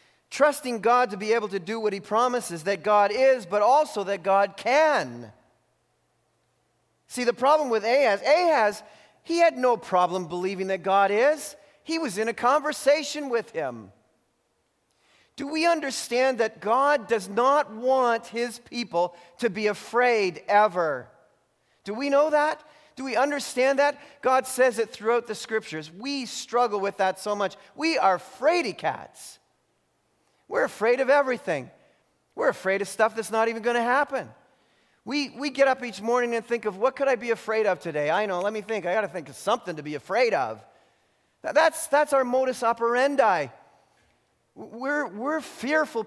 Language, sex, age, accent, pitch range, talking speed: English, male, 40-59, American, 190-260 Hz, 165 wpm